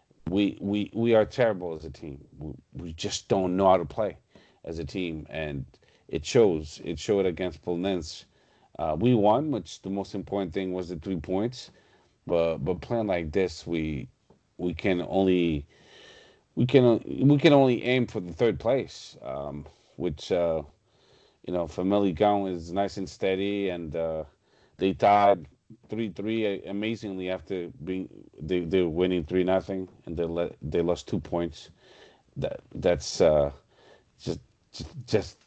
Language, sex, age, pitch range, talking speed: English, male, 40-59, 85-105 Hz, 160 wpm